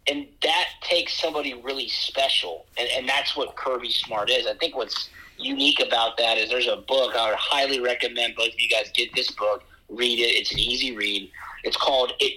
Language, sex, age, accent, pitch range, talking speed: English, male, 40-59, American, 120-150 Hz, 210 wpm